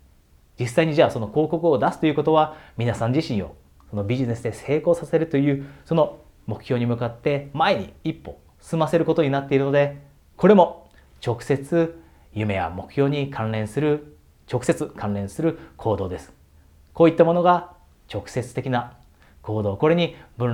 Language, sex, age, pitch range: Japanese, male, 30-49, 95-155 Hz